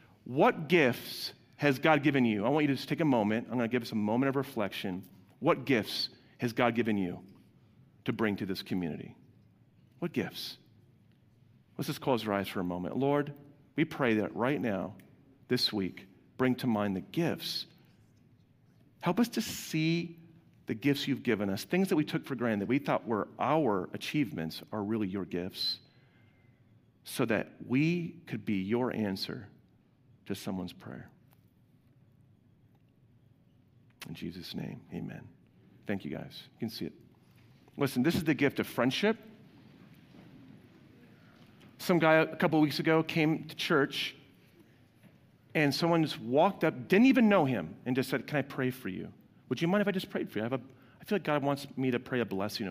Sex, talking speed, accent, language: male, 180 wpm, American, English